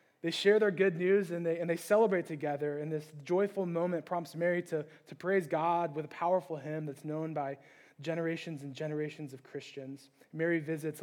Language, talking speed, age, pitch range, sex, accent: English, 190 wpm, 20-39, 160-195 Hz, male, American